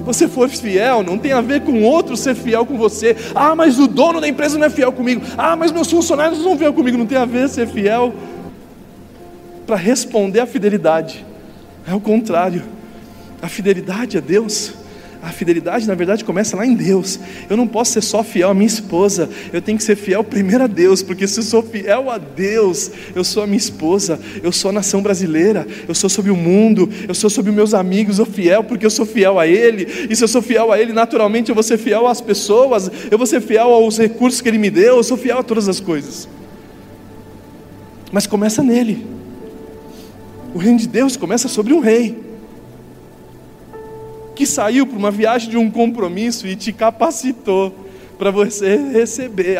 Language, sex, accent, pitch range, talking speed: Portuguese, male, Brazilian, 180-230 Hz, 200 wpm